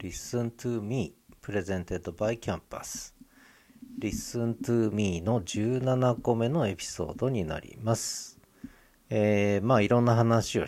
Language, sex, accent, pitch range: Japanese, male, native, 95-120 Hz